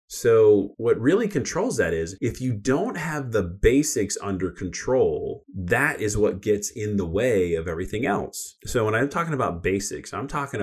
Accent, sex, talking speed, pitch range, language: American, male, 180 wpm, 95-120 Hz, English